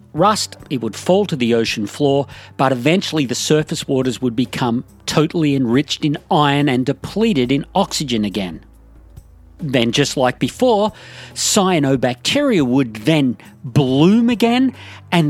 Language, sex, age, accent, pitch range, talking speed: English, male, 40-59, Australian, 125-170 Hz, 135 wpm